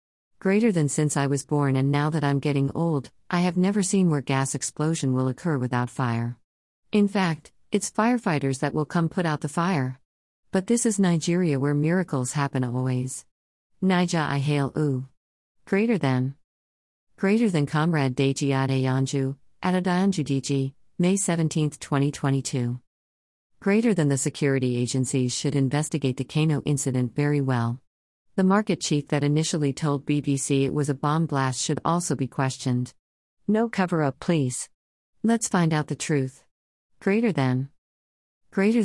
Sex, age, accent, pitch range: female, 40-59, American, 130-165 Hz